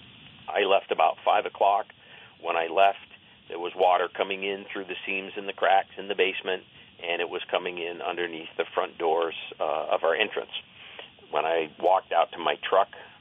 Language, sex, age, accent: English, male, 50-69, American